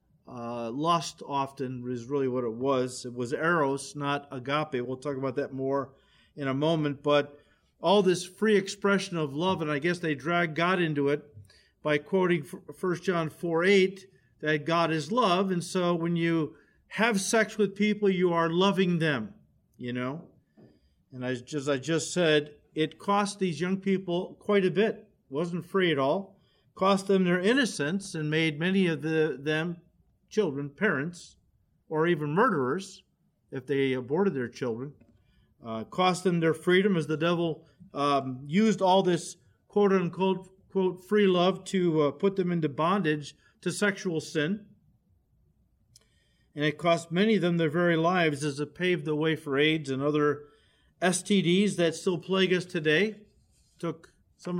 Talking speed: 165 wpm